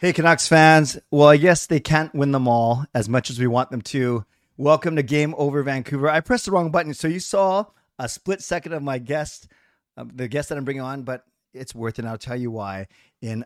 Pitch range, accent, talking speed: 125-160 Hz, American, 235 wpm